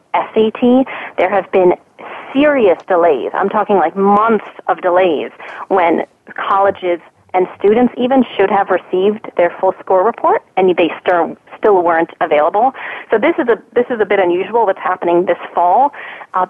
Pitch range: 180-235 Hz